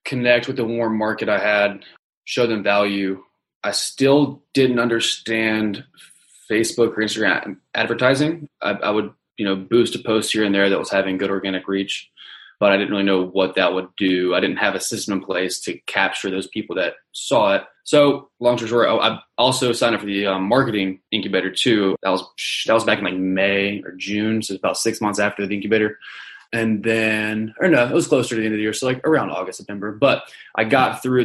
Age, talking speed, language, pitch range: 20-39, 215 wpm, English, 100-115 Hz